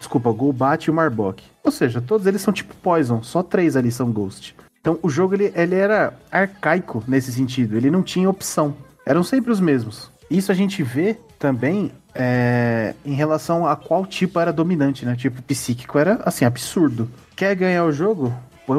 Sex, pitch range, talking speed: male, 115-160 Hz, 180 wpm